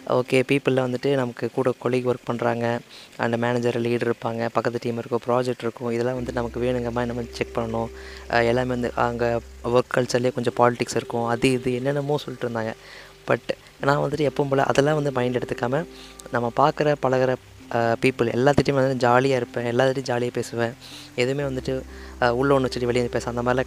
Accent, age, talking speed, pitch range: native, 20-39, 170 wpm, 120-135 Hz